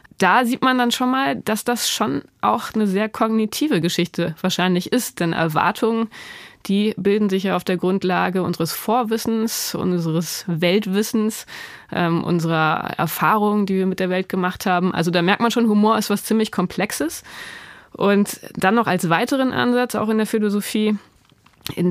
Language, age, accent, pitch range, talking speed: German, 20-39, German, 175-215 Hz, 165 wpm